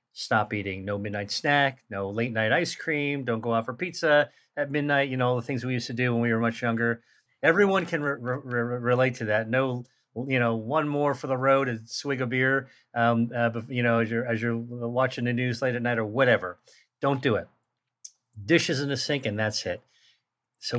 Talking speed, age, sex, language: 220 wpm, 40-59, male, English